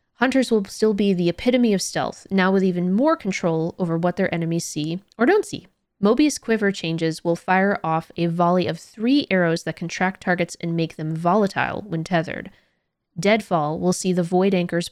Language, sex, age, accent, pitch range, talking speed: English, female, 20-39, American, 170-210 Hz, 190 wpm